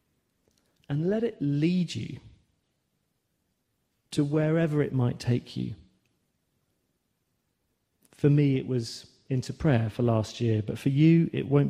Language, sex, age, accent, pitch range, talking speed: English, male, 40-59, British, 110-140 Hz, 130 wpm